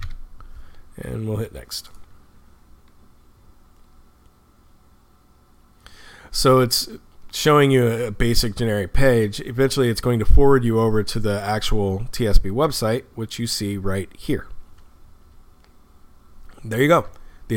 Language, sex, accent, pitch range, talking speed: English, male, American, 100-130 Hz, 115 wpm